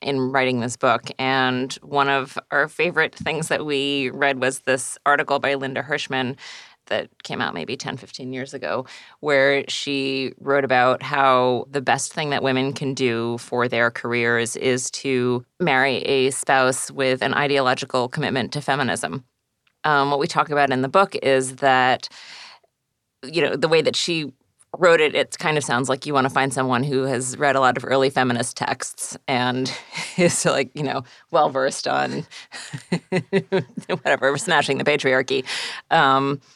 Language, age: English, 30-49